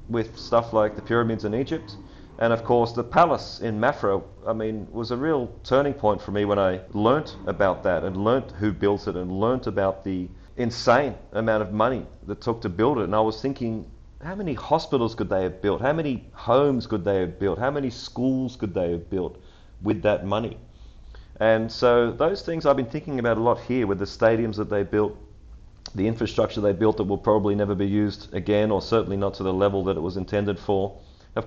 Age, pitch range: 30-49, 100-120 Hz